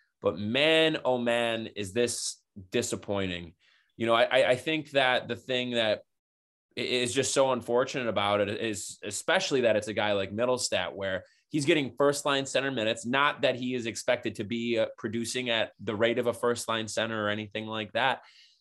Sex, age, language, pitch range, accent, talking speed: male, 20-39, English, 110-140 Hz, American, 185 wpm